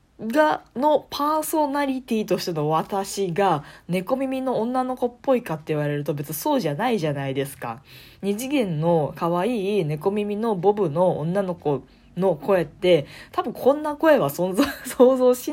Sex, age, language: female, 20-39, Japanese